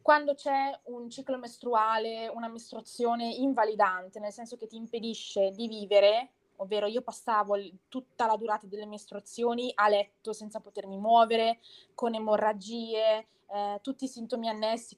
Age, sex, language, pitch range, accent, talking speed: 20-39, female, Italian, 205-245 Hz, native, 140 wpm